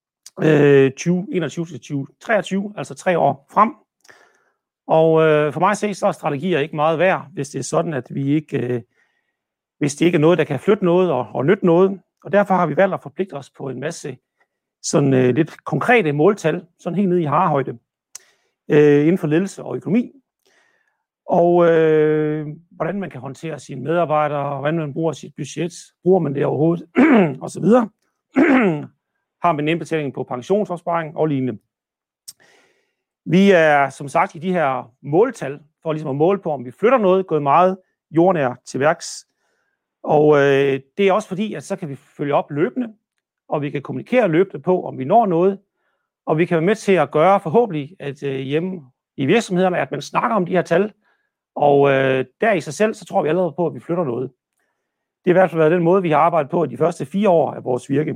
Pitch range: 145-190 Hz